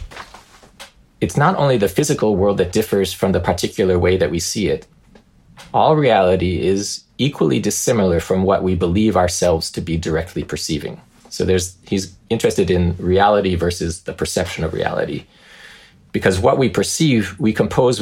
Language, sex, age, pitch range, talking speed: English, male, 30-49, 85-100 Hz, 155 wpm